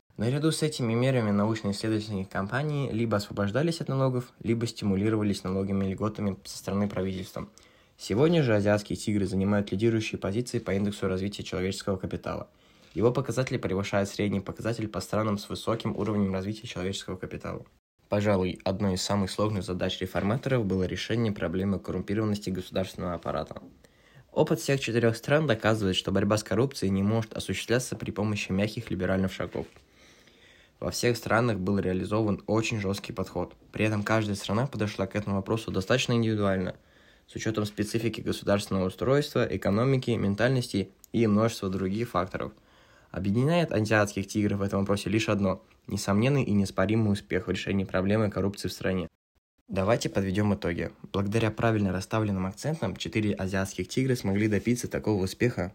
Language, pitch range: Russian, 95-115 Hz